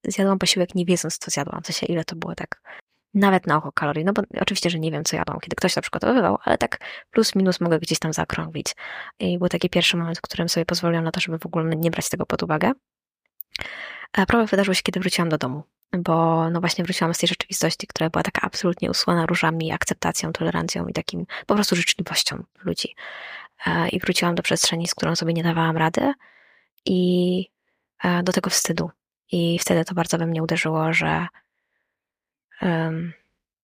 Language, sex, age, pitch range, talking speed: Polish, female, 20-39, 165-185 Hz, 190 wpm